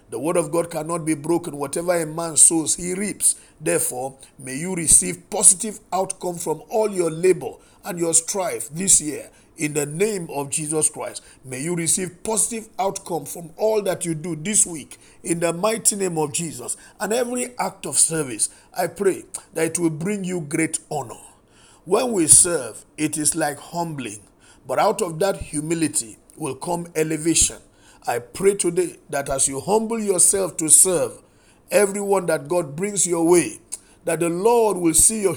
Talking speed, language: 175 wpm, English